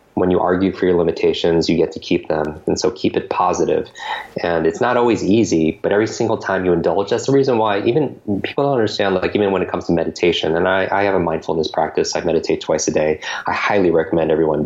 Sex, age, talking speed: male, 20-39, 235 wpm